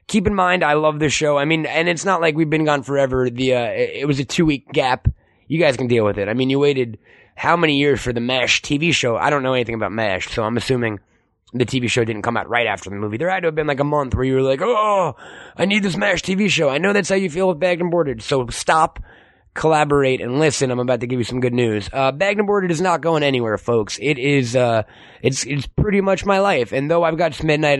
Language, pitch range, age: English, 120-165 Hz, 20-39